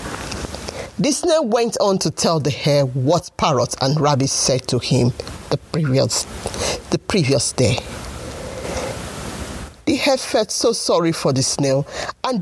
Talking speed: 140 wpm